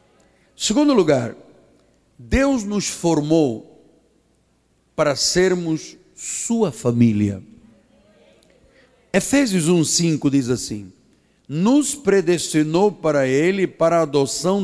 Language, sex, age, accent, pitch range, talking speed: Portuguese, male, 60-79, Brazilian, 155-215 Hz, 85 wpm